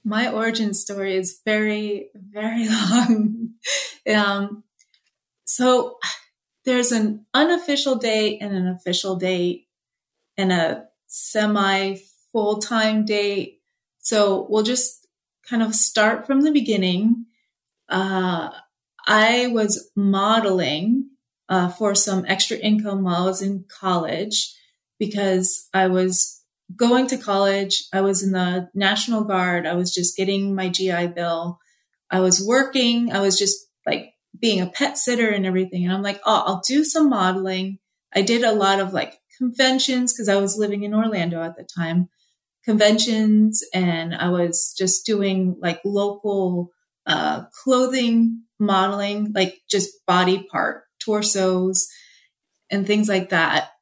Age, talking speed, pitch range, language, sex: 30-49, 135 wpm, 190-225 Hz, English, female